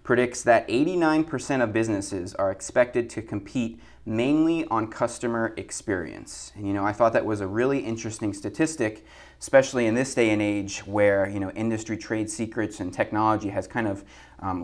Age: 30-49